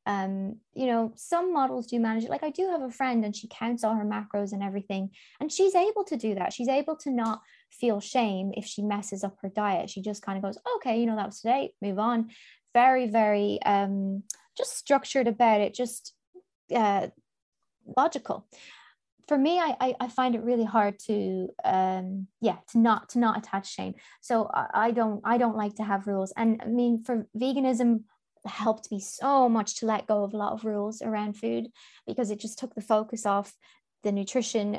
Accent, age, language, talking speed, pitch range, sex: British, 20-39, English, 205 wpm, 205-250 Hz, female